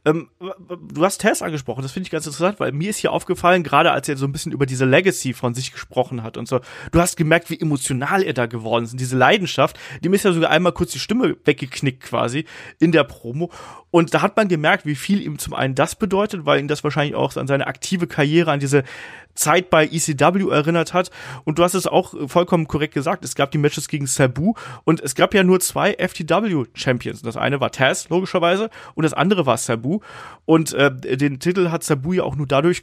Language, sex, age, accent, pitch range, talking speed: German, male, 30-49, German, 135-170 Hz, 225 wpm